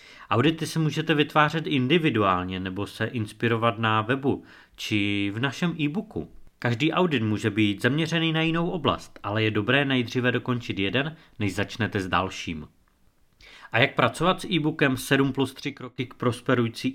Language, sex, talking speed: Czech, male, 150 wpm